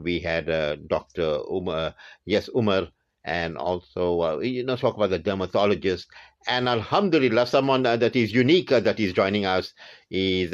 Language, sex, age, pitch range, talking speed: English, male, 50-69, 85-110 Hz, 170 wpm